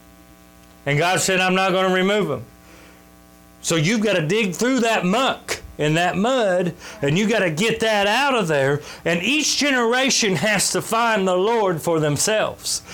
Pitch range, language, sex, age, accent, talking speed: 145-210 Hz, English, male, 40-59, American, 180 wpm